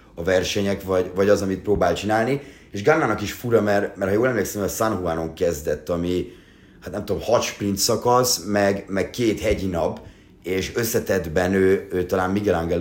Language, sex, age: Hungarian, male, 30-49